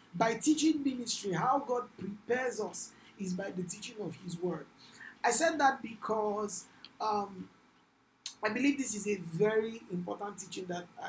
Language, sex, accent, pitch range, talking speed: English, male, Nigerian, 170-225 Hz, 150 wpm